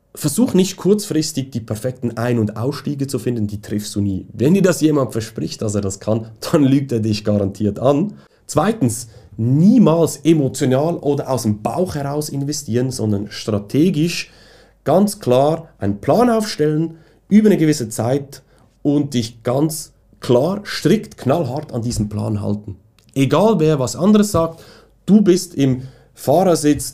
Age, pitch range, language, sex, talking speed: 40-59, 105-140 Hz, German, male, 150 wpm